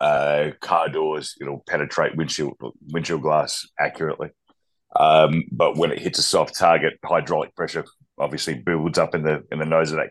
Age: 30-49